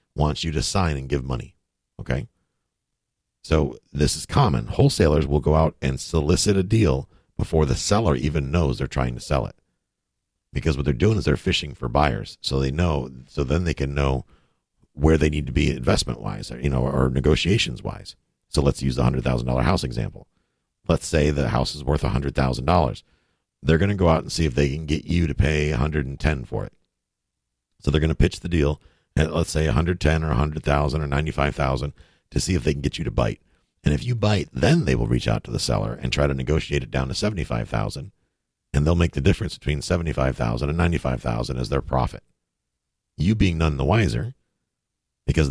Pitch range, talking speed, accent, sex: 70-85 Hz, 200 wpm, American, male